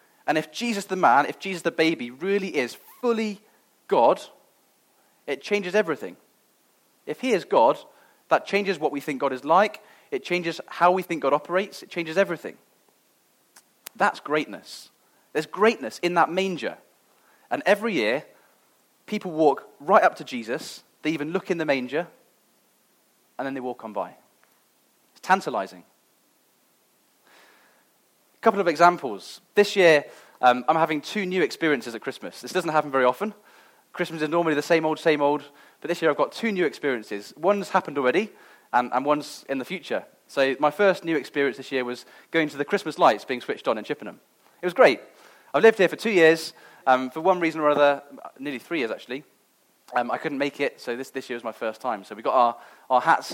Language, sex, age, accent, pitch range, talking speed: English, male, 30-49, British, 140-185 Hz, 190 wpm